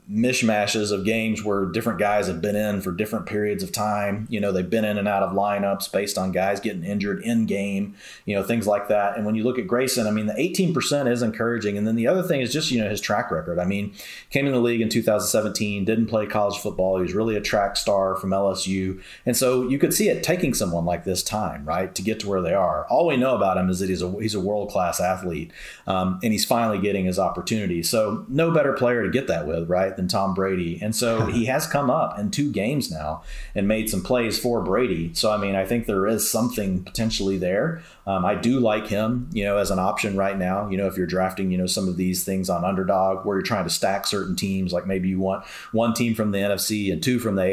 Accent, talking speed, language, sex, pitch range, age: American, 260 wpm, English, male, 95-115 Hz, 30-49